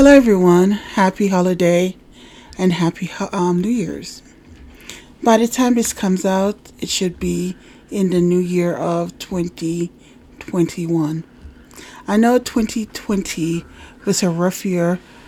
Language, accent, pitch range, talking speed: English, American, 185-230 Hz, 120 wpm